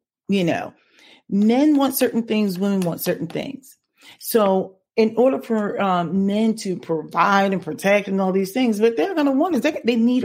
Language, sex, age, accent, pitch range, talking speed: English, female, 30-49, American, 170-225 Hz, 195 wpm